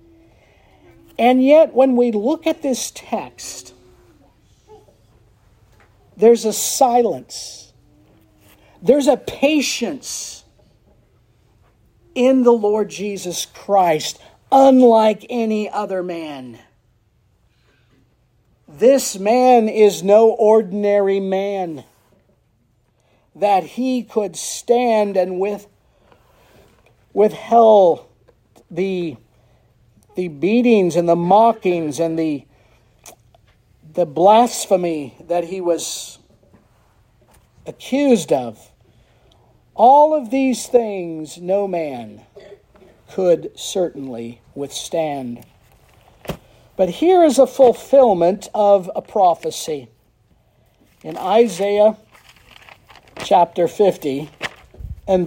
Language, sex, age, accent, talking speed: English, male, 50-69, American, 80 wpm